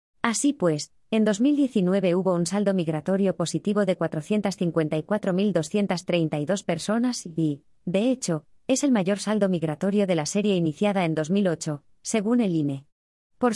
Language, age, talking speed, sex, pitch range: Spanish, 20-39, 135 wpm, female, 165-215 Hz